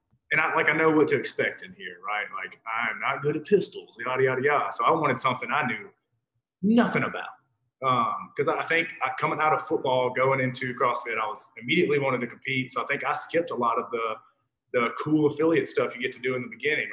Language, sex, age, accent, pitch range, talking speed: English, male, 20-39, American, 120-155 Hz, 235 wpm